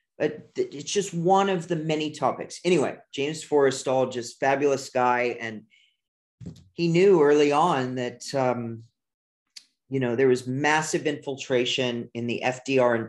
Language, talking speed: English, 140 wpm